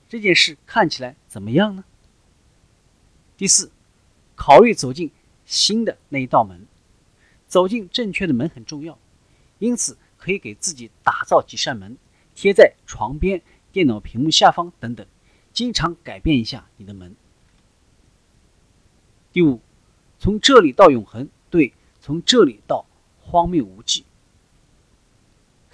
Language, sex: Chinese, male